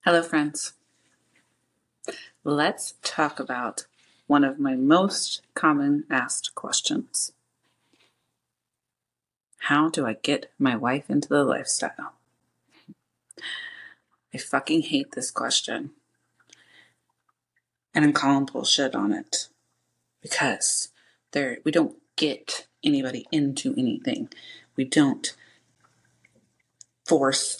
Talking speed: 95 wpm